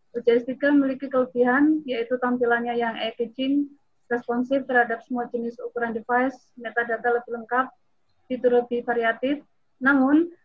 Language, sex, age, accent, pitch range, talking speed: Indonesian, female, 20-39, native, 235-265 Hz, 115 wpm